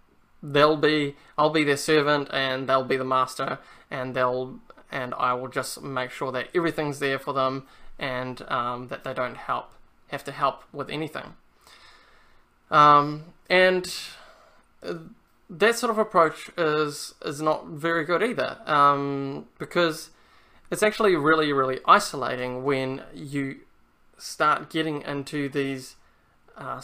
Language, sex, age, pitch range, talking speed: English, male, 20-39, 130-155 Hz, 135 wpm